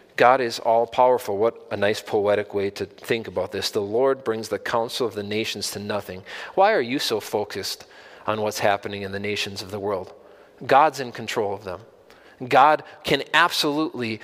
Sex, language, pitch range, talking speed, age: male, English, 110-155 Hz, 185 wpm, 40-59